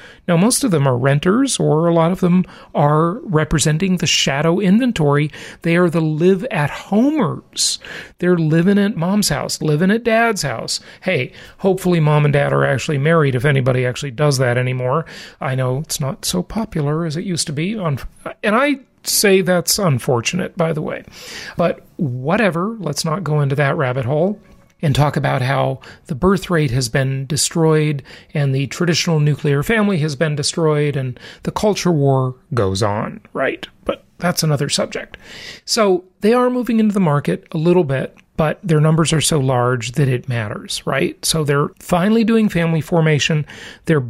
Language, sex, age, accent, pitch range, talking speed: English, male, 40-59, American, 145-195 Hz, 175 wpm